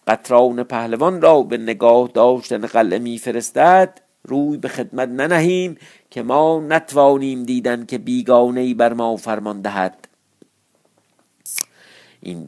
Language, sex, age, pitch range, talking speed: Persian, male, 50-69, 110-150 Hz, 110 wpm